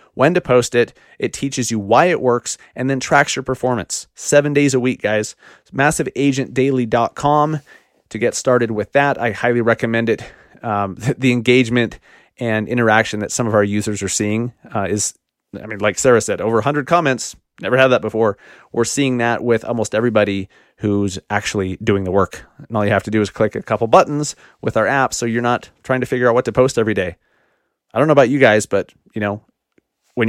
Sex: male